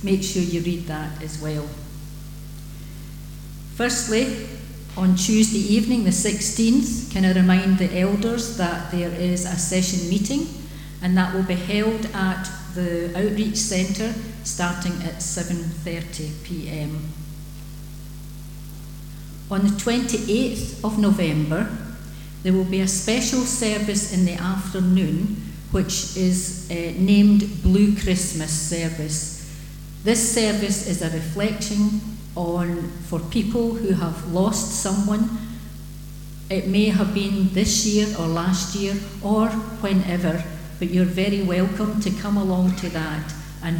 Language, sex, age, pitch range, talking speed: English, female, 60-79, 155-200 Hz, 125 wpm